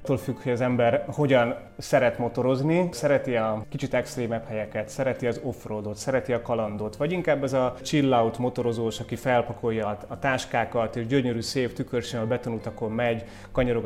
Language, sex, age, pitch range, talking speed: Hungarian, male, 30-49, 110-130 Hz, 165 wpm